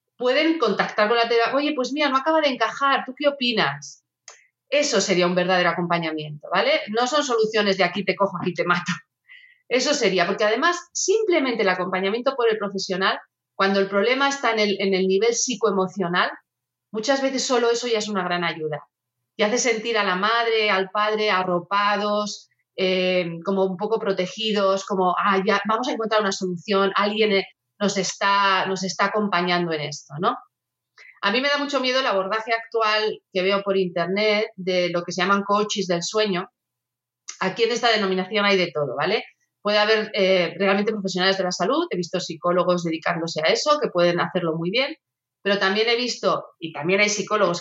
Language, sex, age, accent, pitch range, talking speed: Spanish, female, 30-49, Spanish, 180-230 Hz, 185 wpm